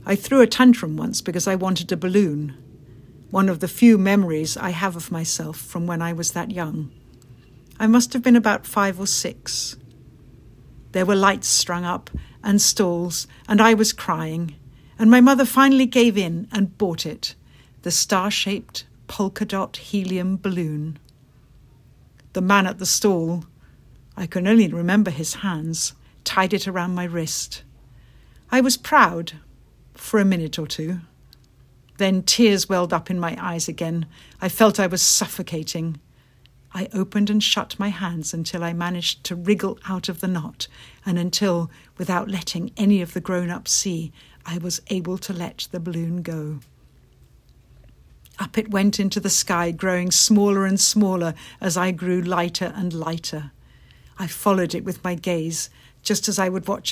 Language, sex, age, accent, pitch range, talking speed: English, female, 60-79, British, 160-195 Hz, 165 wpm